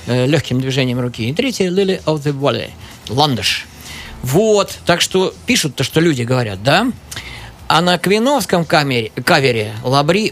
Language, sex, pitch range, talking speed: Russian, male, 125-180 Hz, 140 wpm